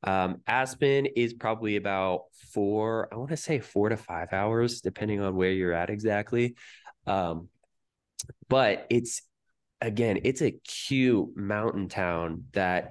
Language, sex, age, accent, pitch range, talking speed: English, male, 20-39, American, 95-115 Hz, 140 wpm